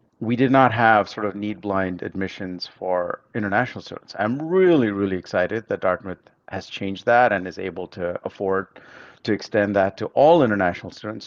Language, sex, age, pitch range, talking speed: English, male, 50-69, 105-140 Hz, 175 wpm